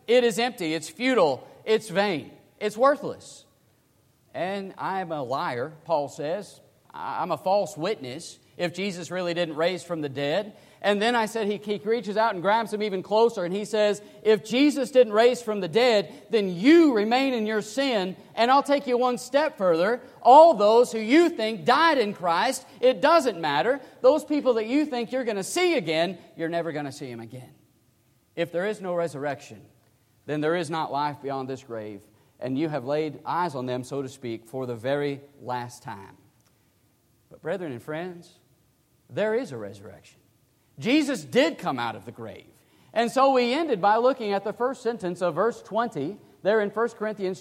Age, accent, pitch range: 40-59, American, 155-245 Hz